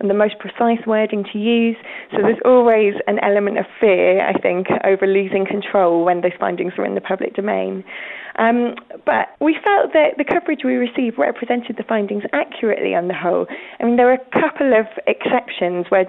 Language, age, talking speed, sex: English, 20-39, 195 wpm, female